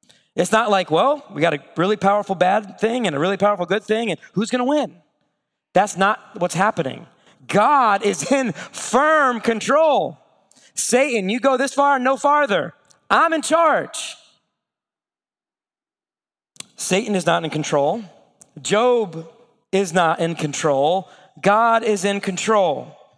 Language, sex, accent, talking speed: English, male, American, 140 wpm